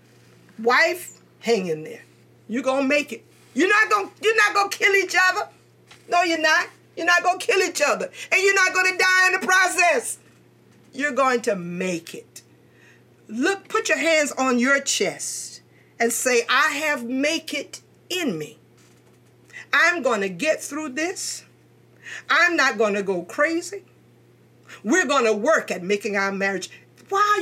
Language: English